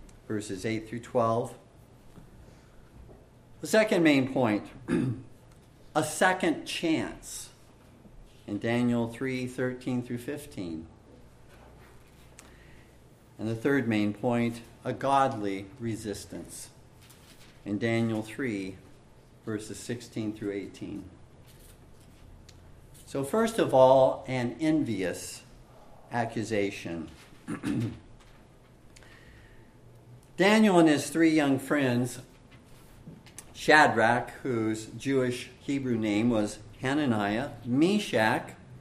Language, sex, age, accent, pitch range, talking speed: English, male, 50-69, American, 115-140 Hz, 80 wpm